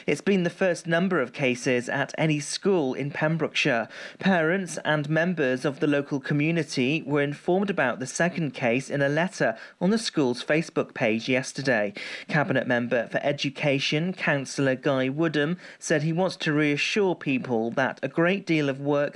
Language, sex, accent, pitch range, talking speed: English, male, British, 140-170 Hz, 165 wpm